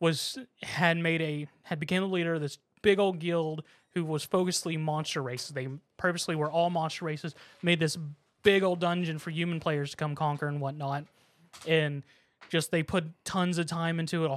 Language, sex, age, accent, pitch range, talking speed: English, male, 20-39, American, 150-170 Hz, 195 wpm